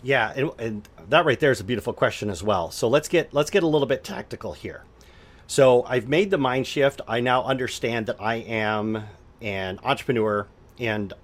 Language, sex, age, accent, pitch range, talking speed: English, male, 40-59, American, 100-135 Hz, 200 wpm